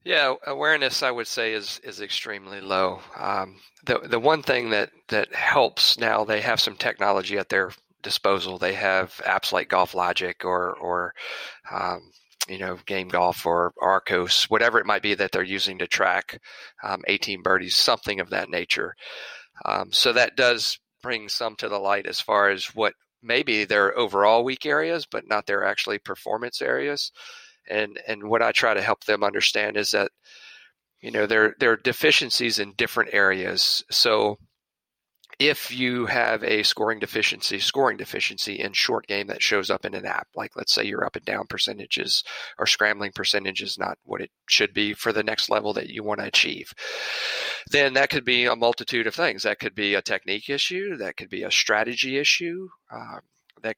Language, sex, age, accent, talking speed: English, male, 40-59, American, 185 wpm